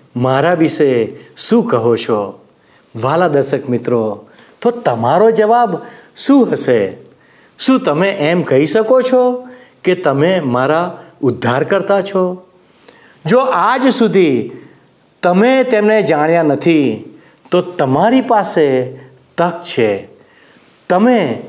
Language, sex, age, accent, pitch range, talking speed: Gujarati, male, 50-69, native, 150-240 Hz, 100 wpm